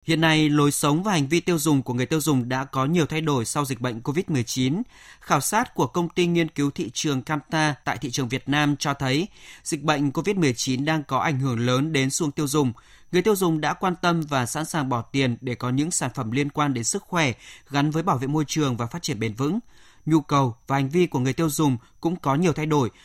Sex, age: male, 20-39